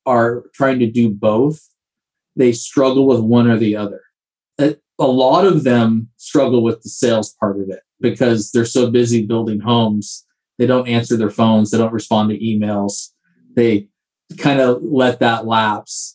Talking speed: 165 wpm